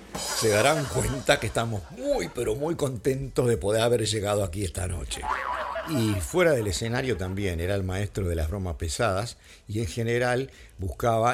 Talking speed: 170 wpm